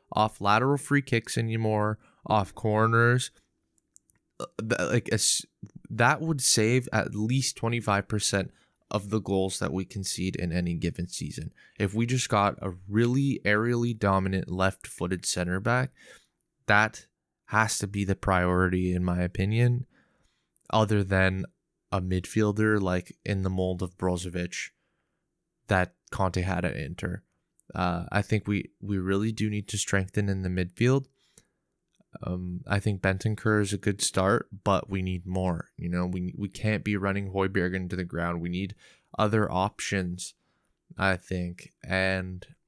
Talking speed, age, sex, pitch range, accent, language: 150 wpm, 20-39, male, 95-110 Hz, American, English